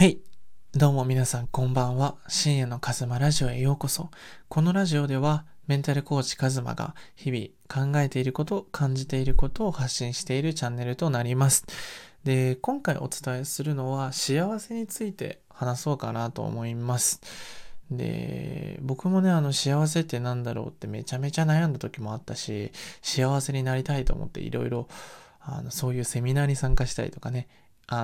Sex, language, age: male, Japanese, 20-39